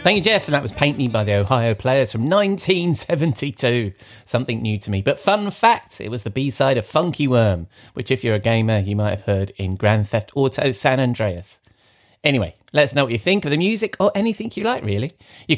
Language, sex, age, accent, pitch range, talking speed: English, male, 30-49, British, 110-160 Hz, 225 wpm